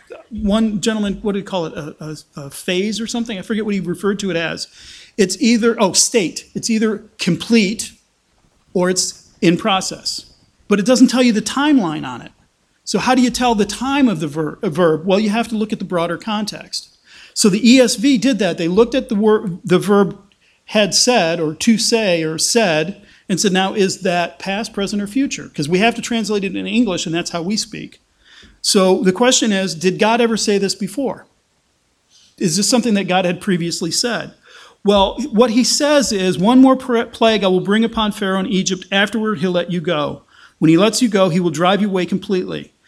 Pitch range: 180-225 Hz